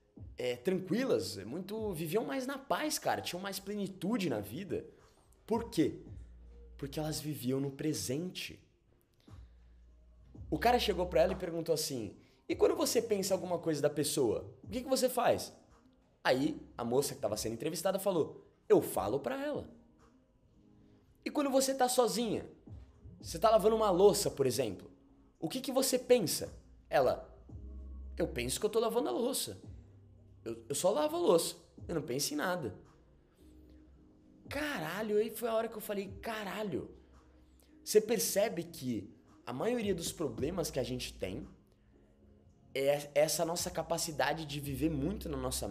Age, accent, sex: 20-39, Brazilian, male